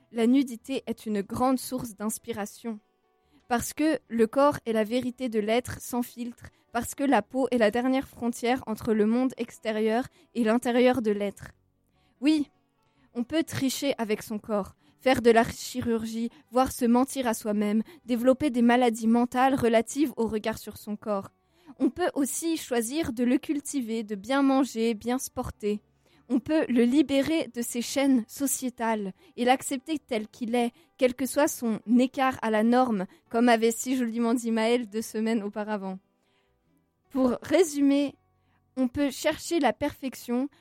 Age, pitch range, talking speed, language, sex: 20-39, 225-270 Hz, 165 wpm, French, female